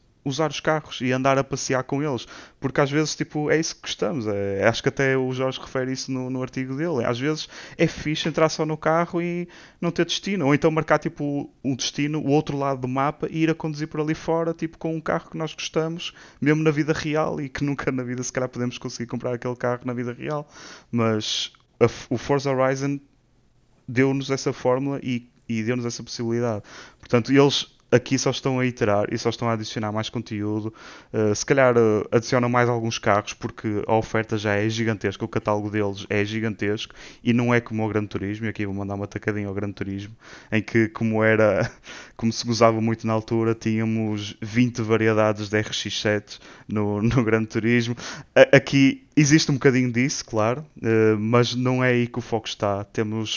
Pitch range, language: 110-140 Hz, Portuguese